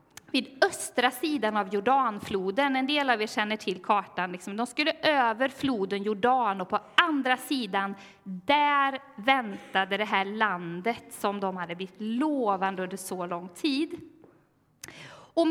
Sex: female